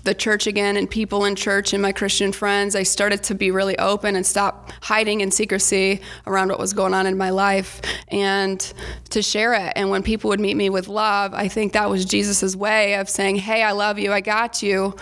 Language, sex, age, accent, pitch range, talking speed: English, female, 20-39, American, 195-210 Hz, 230 wpm